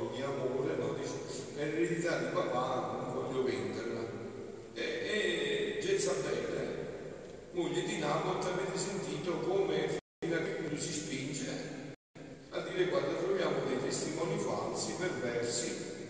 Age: 50-69